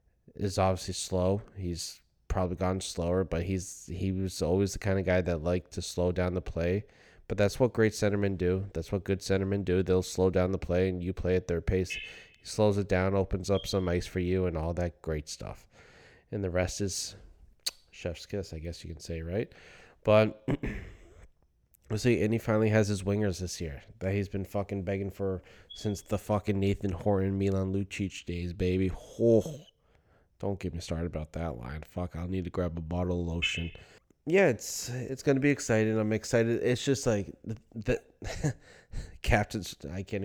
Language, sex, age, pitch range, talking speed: English, male, 20-39, 90-100 Hz, 195 wpm